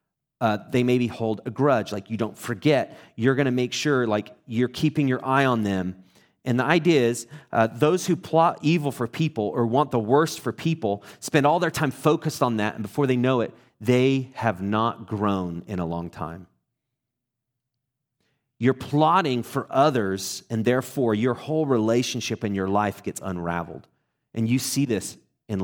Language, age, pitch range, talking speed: English, 30-49, 110-135 Hz, 185 wpm